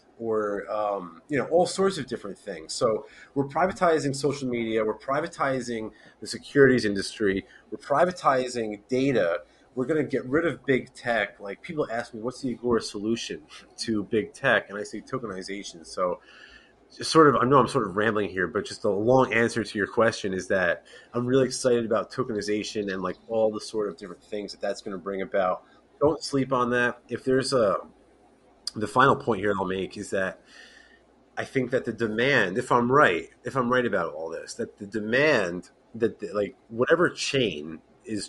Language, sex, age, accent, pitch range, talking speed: English, male, 30-49, American, 105-135 Hz, 195 wpm